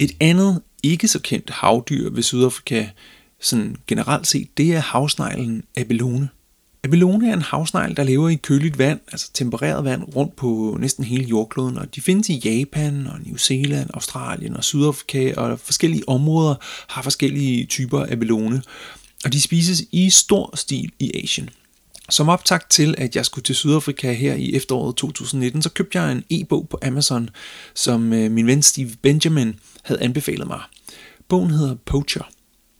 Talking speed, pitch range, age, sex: 160 wpm, 120-155 Hz, 30-49, male